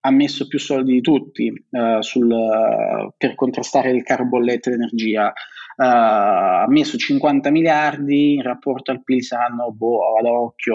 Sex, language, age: male, Italian, 30-49